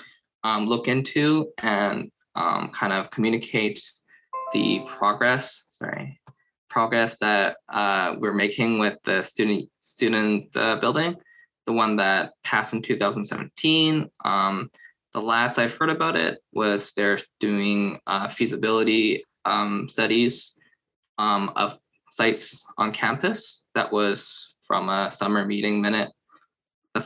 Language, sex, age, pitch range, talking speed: English, male, 20-39, 105-130 Hz, 120 wpm